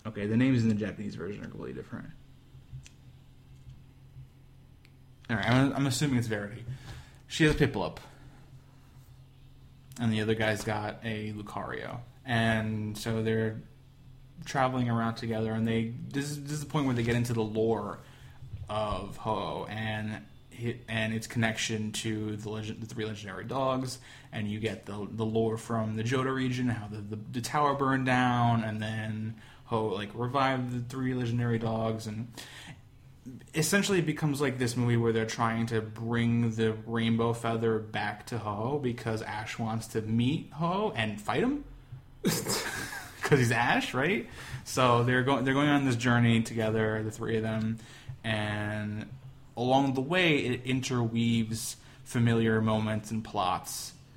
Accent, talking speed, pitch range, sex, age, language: American, 155 wpm, 110-130 Hz, male, 20-39, English